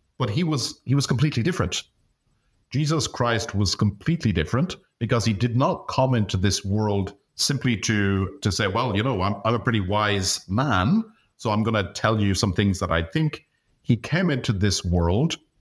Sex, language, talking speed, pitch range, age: male, English, 185 wpm, 95-120 Hz, 50-69